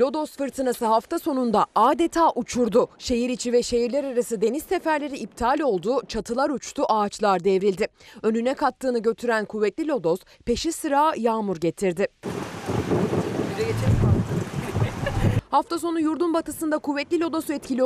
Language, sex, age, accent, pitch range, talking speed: Turkish, female, 30-49, native, 205-275 Hz, 120 wpm